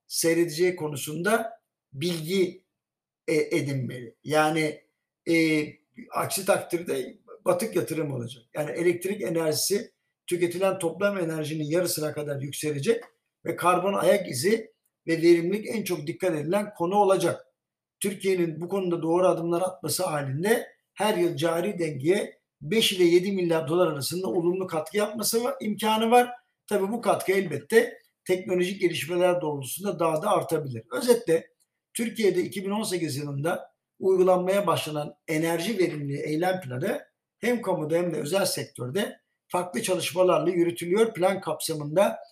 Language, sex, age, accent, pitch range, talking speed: Turkish, male, 60-79, native, 160-200 Hz, 120 wpm